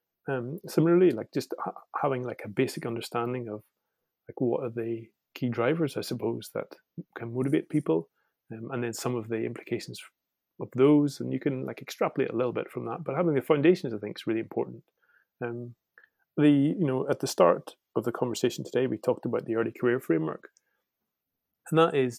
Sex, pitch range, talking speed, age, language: male, 115-145 Hz, 195 wpm, 30-49, English